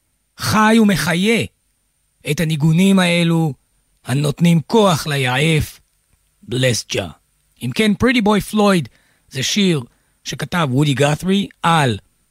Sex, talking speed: male, 95 wpm